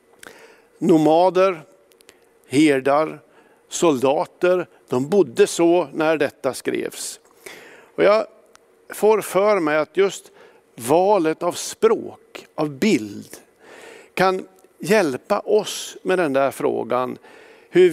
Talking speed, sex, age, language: 95 wpm, male, 50-69, Swedish